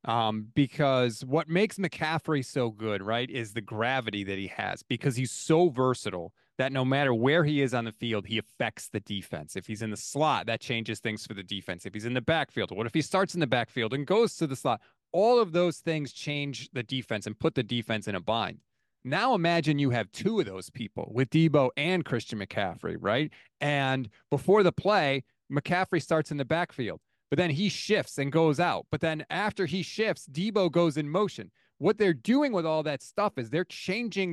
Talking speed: 215 wpm